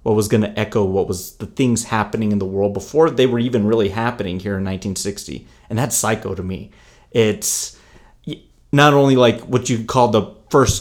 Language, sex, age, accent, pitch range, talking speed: English, male, 30-49, American, 105-135 Hz, 200 wpm